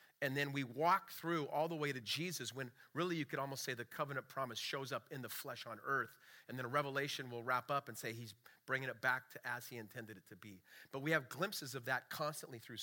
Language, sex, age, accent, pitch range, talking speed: English, male, 40-59, American, 125-155 Hz, 255 wpm